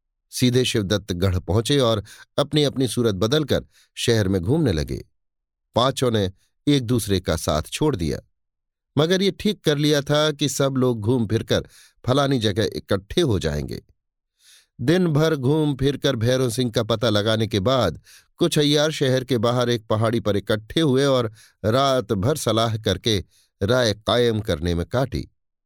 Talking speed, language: 160 wpm, Hindi